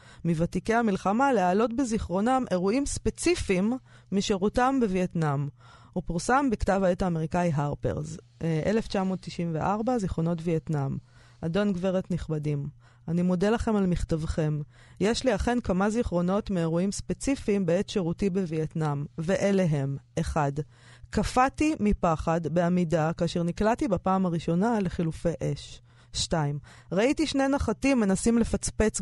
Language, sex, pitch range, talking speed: Hebrew, female, 160-205 Hz, 110 wpm